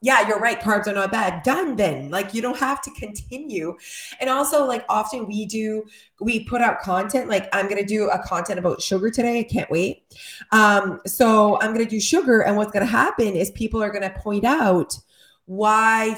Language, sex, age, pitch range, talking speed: English, female, 20-39, 200-265 Hz, 215 wpm